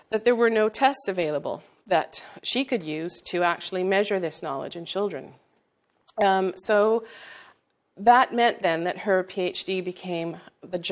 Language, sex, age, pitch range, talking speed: English, female, 40-59, 170-215 Hz, 150 wpm